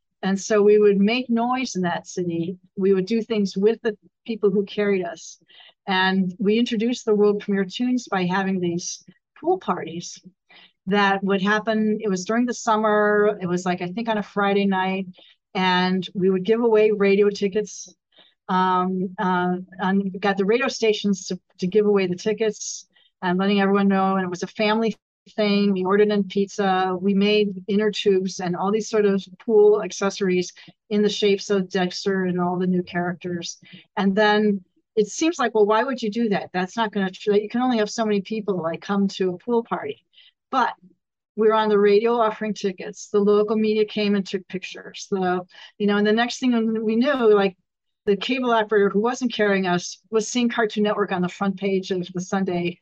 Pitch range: 185-215 Hz